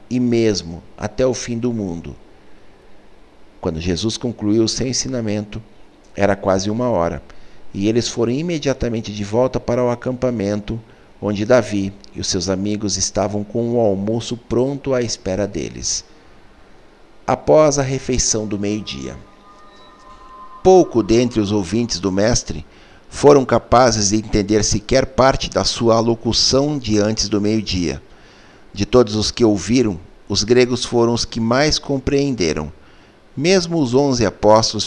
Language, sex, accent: Portuguese, male, Brazilian